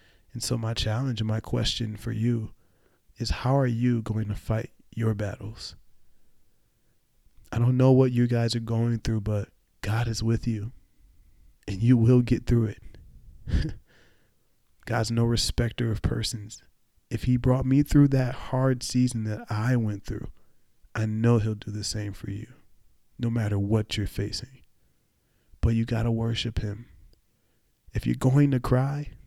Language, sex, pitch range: English, male, 105-120 Hz